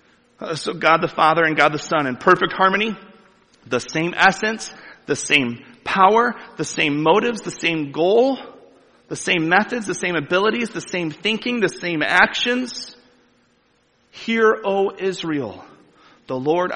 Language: English